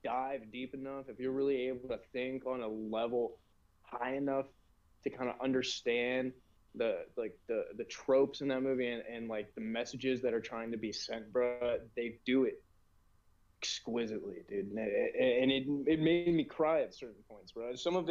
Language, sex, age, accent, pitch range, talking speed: English, male, 20-39, American, 120-140 Hz, 185 wpm